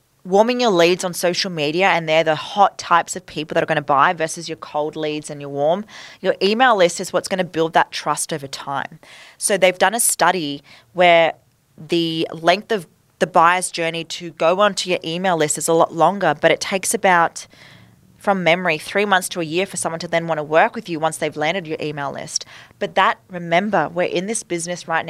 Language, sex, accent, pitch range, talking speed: English, female, Australian, 155-190 Hz, 220 wpm